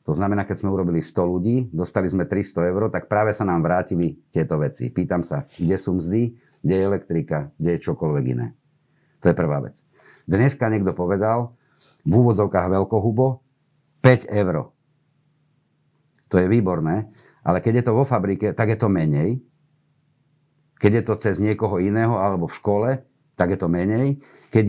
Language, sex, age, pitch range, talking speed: Slovak, male, 50-69, 100-140 Hz, 170 wpm